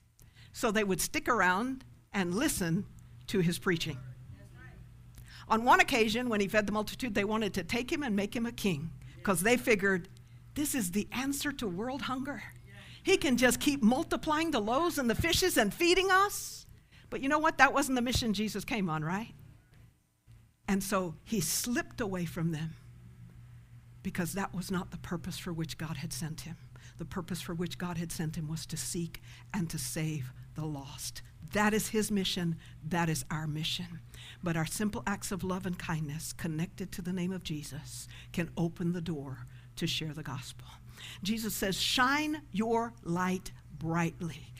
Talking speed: 180 wpm